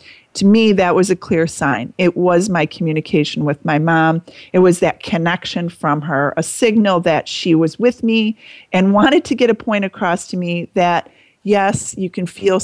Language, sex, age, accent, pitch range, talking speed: English, female, 40-59, American, 160-195 Hz, 195 wpm